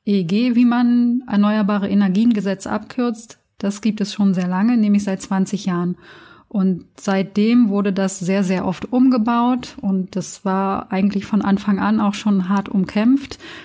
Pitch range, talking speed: 185-215 Hz, 155 wpm